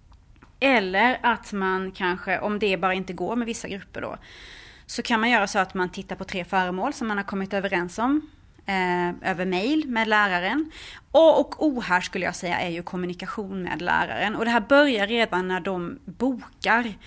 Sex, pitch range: female, 185-235 Hz